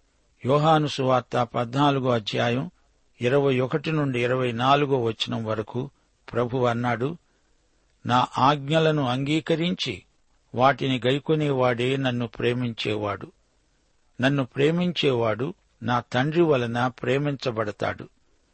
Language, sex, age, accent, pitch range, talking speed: Telugu, male, 60-79, native, 120-145 Hz, 80 wpm